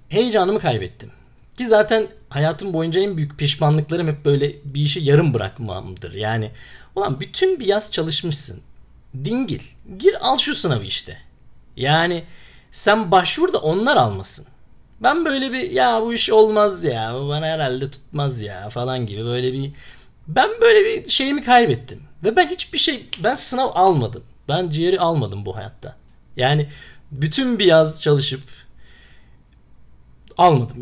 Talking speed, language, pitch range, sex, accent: 140 wpm, Turkish, 125-190 Hz, male, native